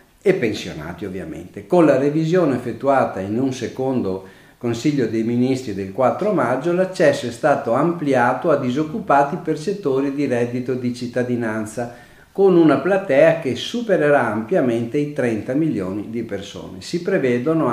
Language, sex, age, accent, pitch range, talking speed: Italian, male, 50-69, native, 115-160 Hz, 140 wpm